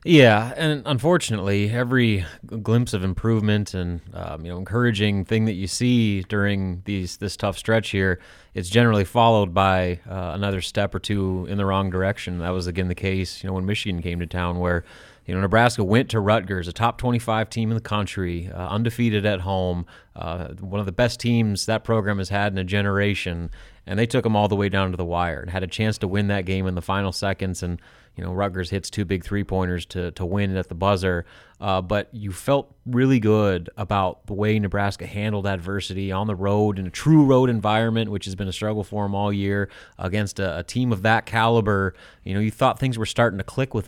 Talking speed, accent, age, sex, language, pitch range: 220 wpm, American, 30-49, male, English, 95-110 Hz